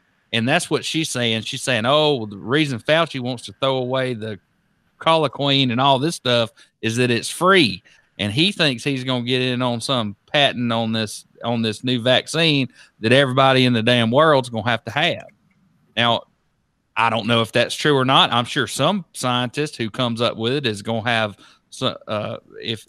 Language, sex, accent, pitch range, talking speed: English, male, American, 110-135 Hz, 205 wpm